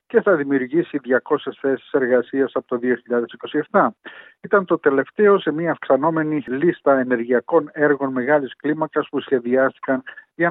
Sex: male